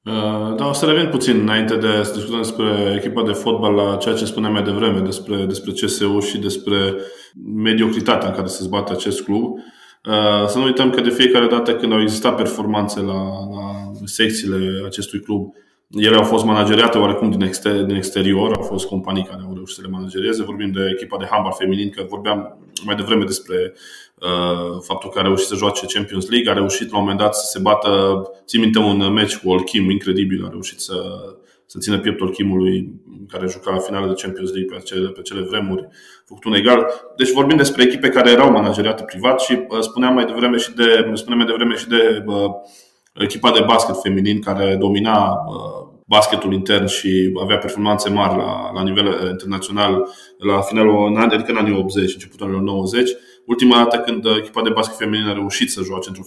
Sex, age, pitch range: male, 20-39, 95-110 Hz